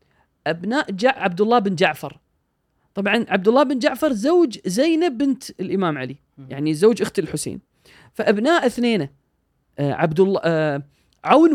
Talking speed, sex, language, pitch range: 120 wpm, female, Arabic, 150-250 Hz